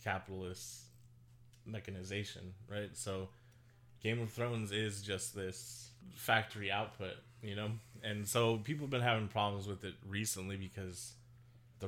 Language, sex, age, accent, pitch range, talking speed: English, male, 20-39, American, 100-120 Hz, 130 wpm